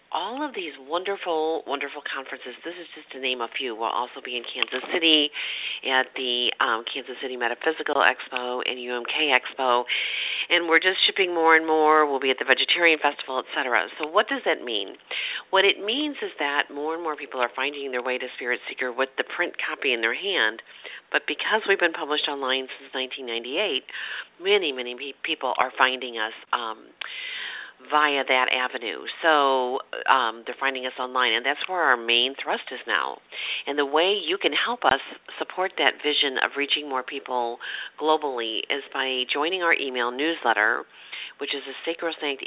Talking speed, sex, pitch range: 180 wpm, female, 125-160 Hz